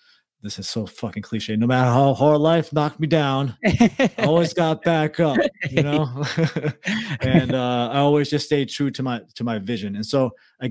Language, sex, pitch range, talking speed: English, male, 110-140 Hz, 195 wpm